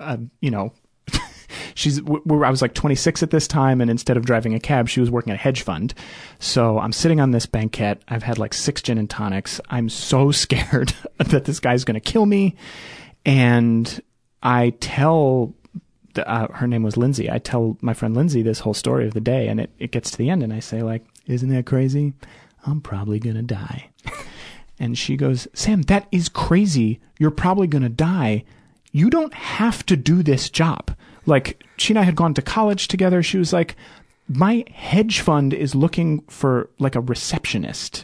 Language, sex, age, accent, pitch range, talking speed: English, male, 30-49, American, 120-160 Hz, 200 wpm